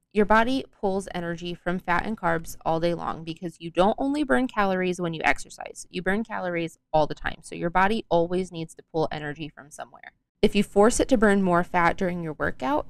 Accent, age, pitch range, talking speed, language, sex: American, 20-39, 165-200 Hz, 220 wpm, English, female